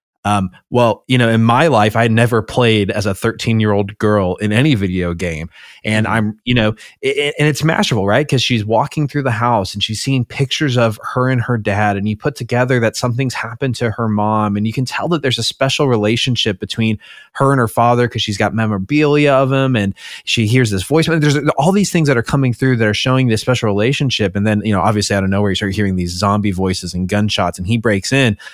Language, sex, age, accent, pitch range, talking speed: English, male, 20-39, American, 105-135 Hz, 240 wpm